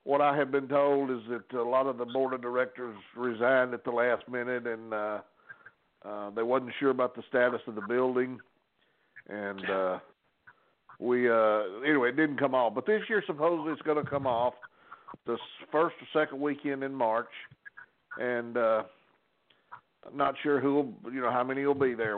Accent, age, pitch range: American, 60-79, 115-140 Hz